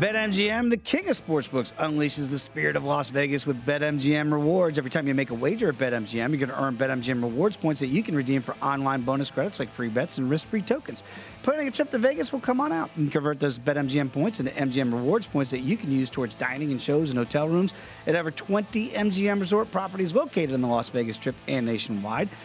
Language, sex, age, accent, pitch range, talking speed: English, male, 40-59, American, 130-175 Hz, 230 wpm